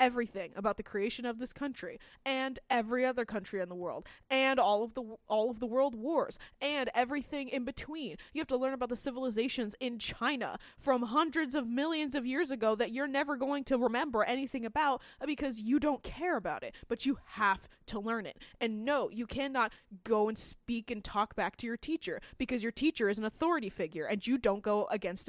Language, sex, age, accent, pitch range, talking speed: English, female, 20-39, American, 220-280 Hz, 210 wpm